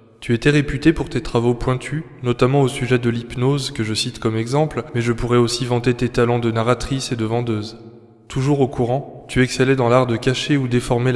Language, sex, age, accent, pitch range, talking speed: French, male, 20-39, French, 115-130 Hz, 215 wpm